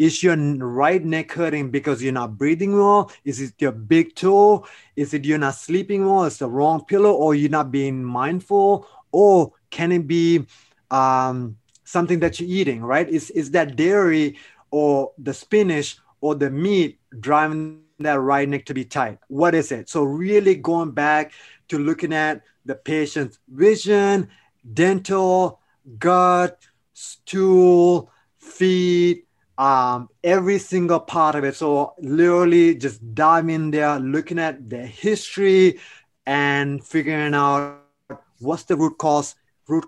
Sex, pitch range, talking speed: male, 140-175 Hz, 145 wpm